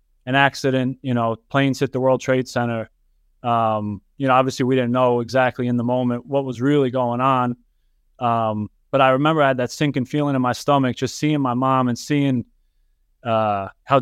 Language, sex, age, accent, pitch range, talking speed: English, male, 20-39, American, 115-140 Hz, 195 wpm